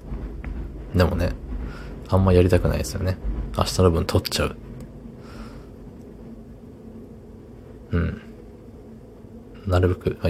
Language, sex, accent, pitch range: Japanese, male, native, 85-110 Hz